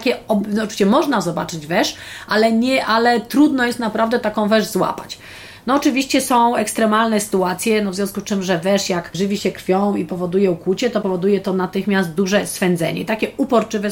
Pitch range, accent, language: 190-225 Hz, native, Polish